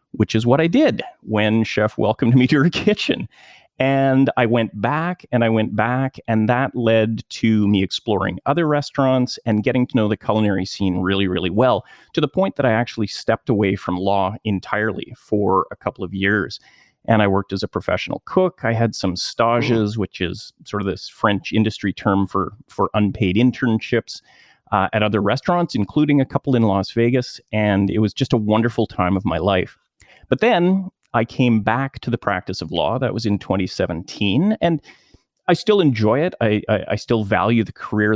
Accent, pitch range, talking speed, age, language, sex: American, 100-130 Hz, 195 wpm, 30-49, English, male